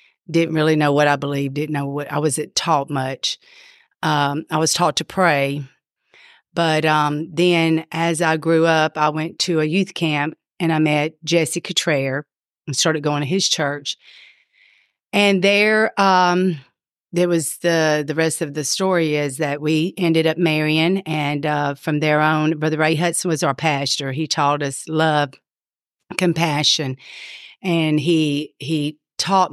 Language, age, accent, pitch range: English, 40-59, American, 140-160 Hz